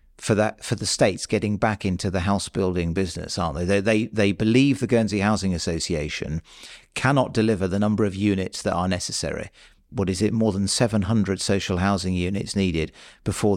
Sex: male